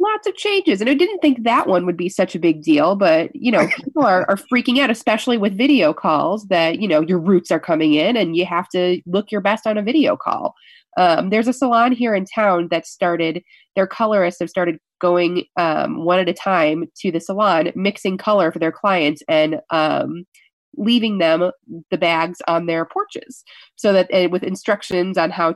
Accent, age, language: American, 30-49, English